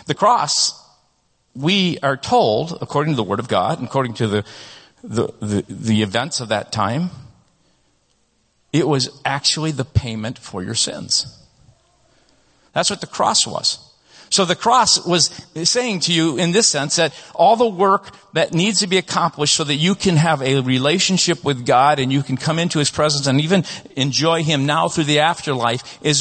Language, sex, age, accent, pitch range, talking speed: English, male, 50-69, American, 130-170 Hz, 175 wpm